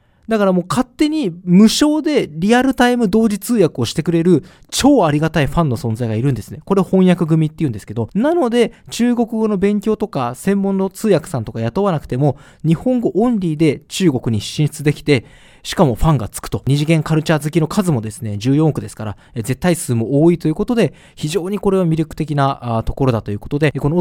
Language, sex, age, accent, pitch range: Japanese, male, 20-39, native, 125-205 Hz